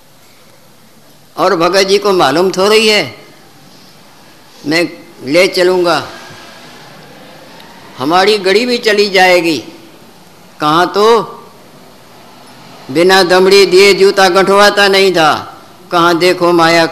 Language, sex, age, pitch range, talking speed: Hindi, female, 60-79, 165-200 Hz, 100 wpm